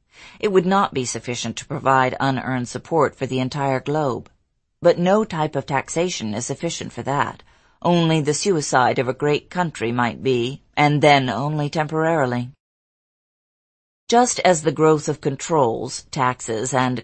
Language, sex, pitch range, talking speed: English, female, 125-155 Hz, 150 wpm